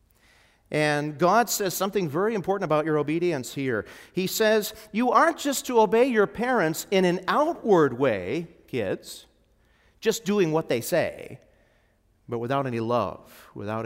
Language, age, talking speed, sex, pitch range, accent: English, 50-69, 145 wpm, male, 135-215 Hz, American